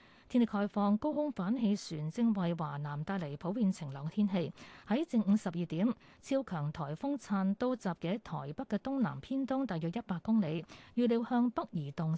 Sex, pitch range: female, 160-235 Hz